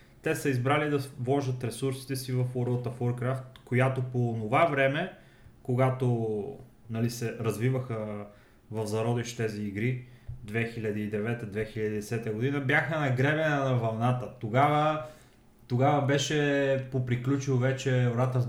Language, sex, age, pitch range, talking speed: Bulgarian, male, 20-39, 120-145 Hz, 115 wpm